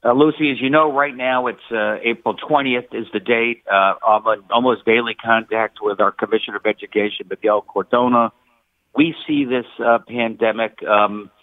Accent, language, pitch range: American, English, 110-125 Hz